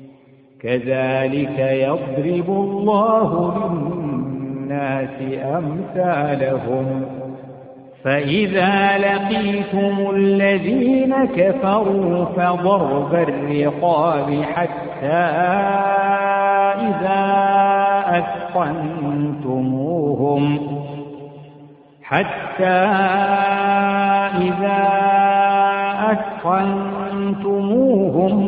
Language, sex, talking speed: Arabic, male, 35 wpm